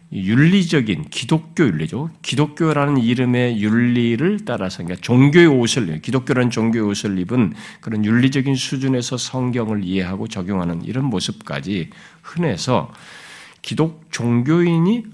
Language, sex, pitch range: Korean, male, 110-165 Hz